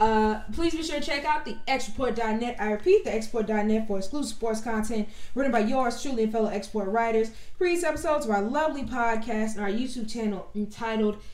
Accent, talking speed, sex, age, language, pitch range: American, 180 wpm, female, 10-29, English, 210-260 Hz